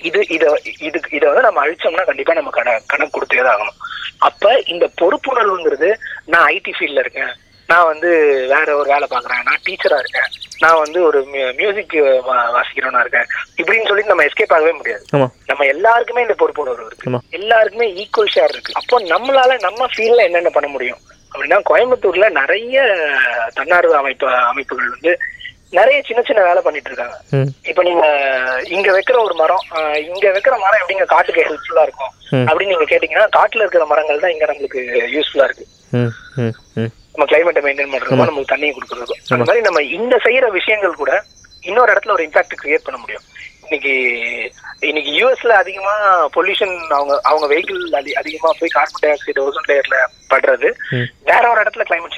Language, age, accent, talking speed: Tamil, 20-39, native, 120 wpm